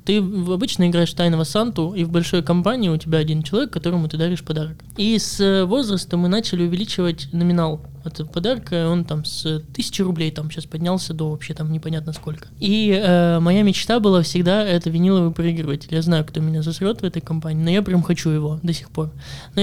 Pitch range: 160-190 Hz